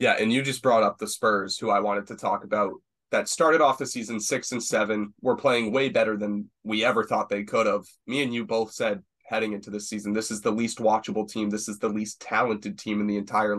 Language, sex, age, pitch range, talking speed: English, male, 20-39, 105-125 Hz, 250 wpm